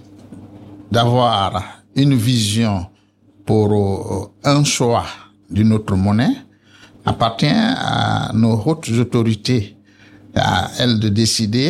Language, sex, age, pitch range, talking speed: French, male, 60-79, 100-125 Hz, 95 wpm